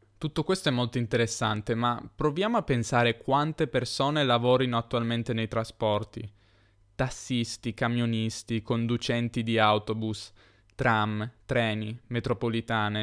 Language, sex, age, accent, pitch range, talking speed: Italian, male, 10-29, native, 110-130 Hz, 105 wpm